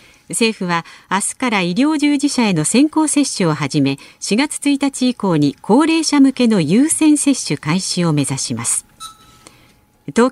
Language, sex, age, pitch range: Japanese, female, 50-69, 165-255 Hz